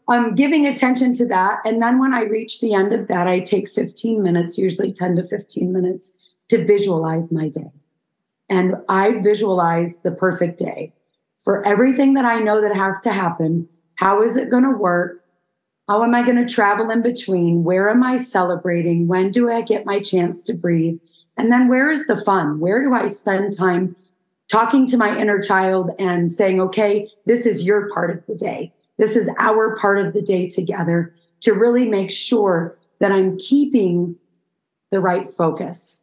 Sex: female